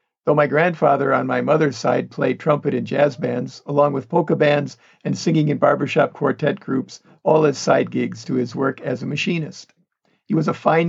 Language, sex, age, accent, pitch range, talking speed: English, male, 50-69, American, 145-165 Hz, 200 wpm